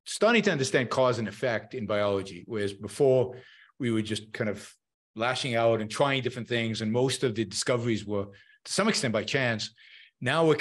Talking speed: 190 wpm